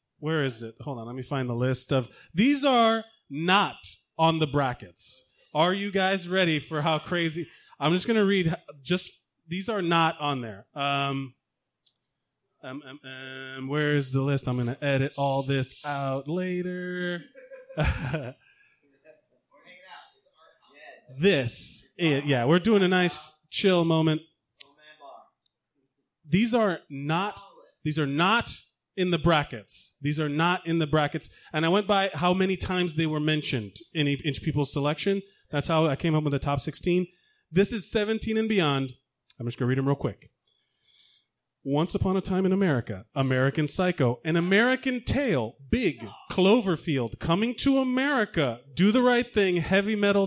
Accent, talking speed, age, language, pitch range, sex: American, 160 wpm, 30-49, English, 135-185 Hz, male